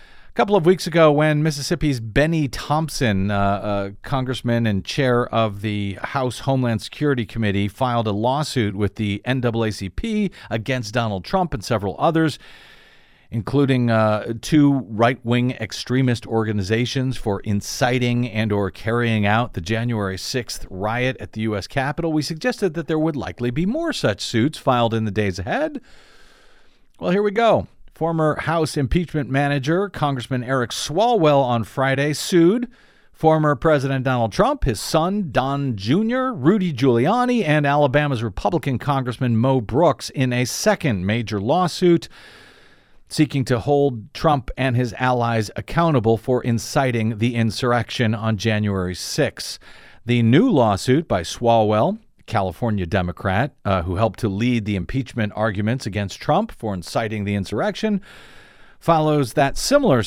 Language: English